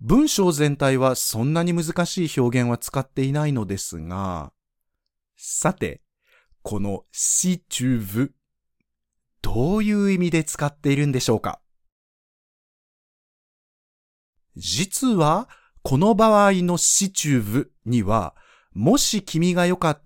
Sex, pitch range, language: male, 115-175 Hz, Japanese